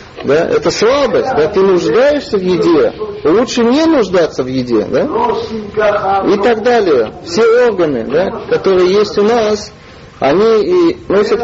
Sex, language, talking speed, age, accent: male, Russian, 140 wpm, 40-59, native